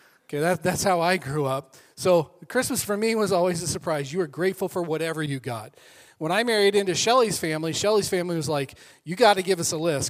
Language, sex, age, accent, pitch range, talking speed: English, male, 40-59, American, 155-195 Hz, 230 wpm